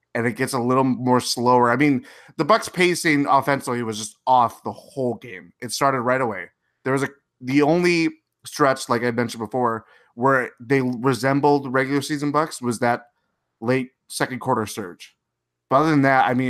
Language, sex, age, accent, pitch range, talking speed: English, male, 20-39, American, 120-140 Hz, 185 wpm